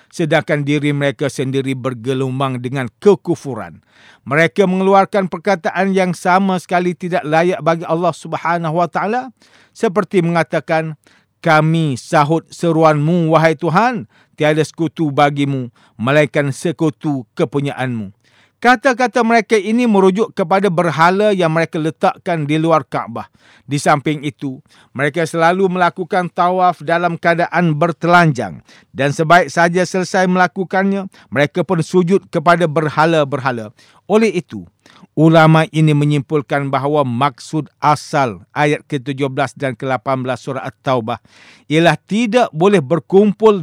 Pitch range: 145-180 Hz